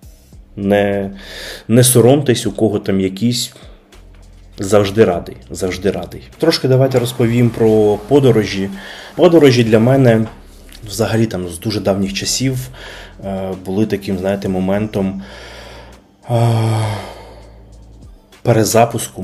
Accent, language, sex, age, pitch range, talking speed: native, Ukrainian, male, 20-39, 95-110 Hz, 95 wpm